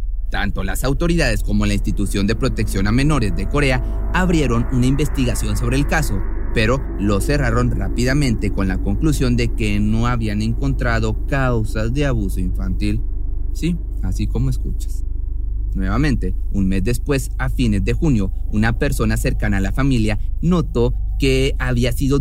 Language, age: Spanish, 30-49